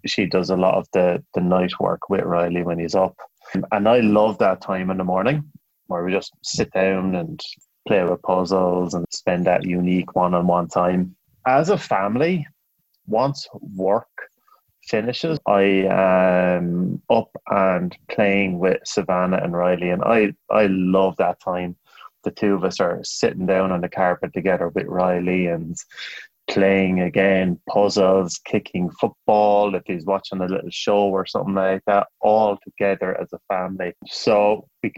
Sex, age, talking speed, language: male, 20-39, 160 wpm, English